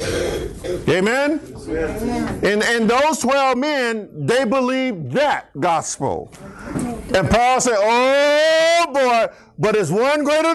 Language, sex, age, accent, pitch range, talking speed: English, male, 50-69, American, 190-265 Hz, 110 wpm